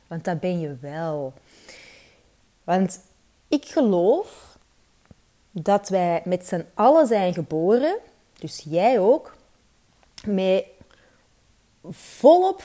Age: 30-49